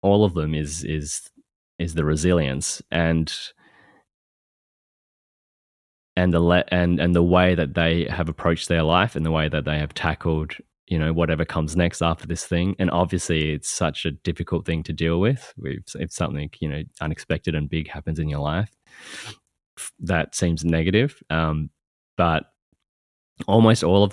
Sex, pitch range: male, 80-90 Hz